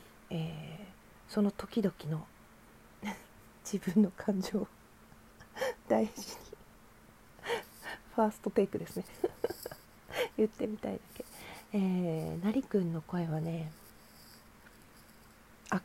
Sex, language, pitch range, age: female, Japanese, 175-220 Hz, 40-59